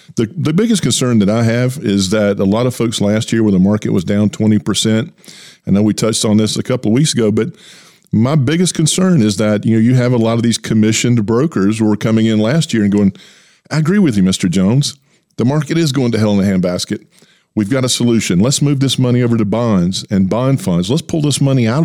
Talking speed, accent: 245 wpm, American